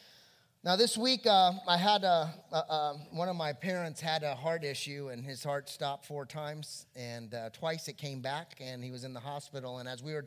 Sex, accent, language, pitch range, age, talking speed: male, American, English, 140-175 Hz, 30-49, 210 wpm